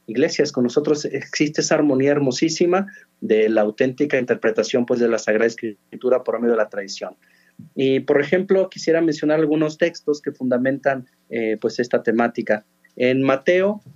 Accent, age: Mexican, 40-59